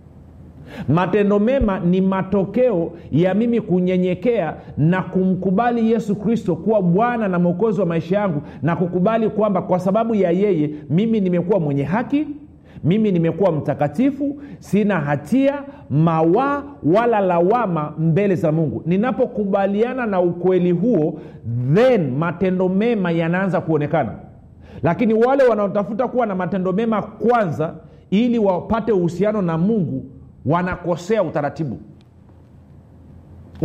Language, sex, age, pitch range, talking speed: Swahili, male, 50-69, 150-210 Hz, 115 wpm